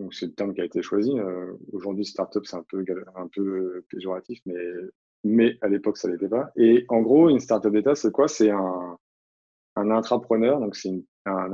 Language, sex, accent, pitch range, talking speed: French, male, French, 90-110 Hz, 215 wpm